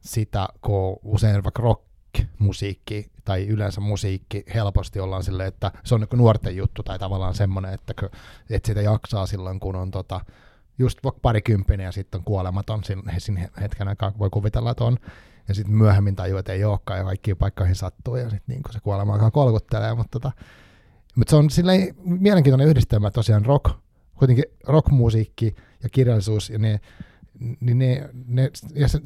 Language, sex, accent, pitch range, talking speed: Finnish, male, native, 100-125 Hz, 150 wpm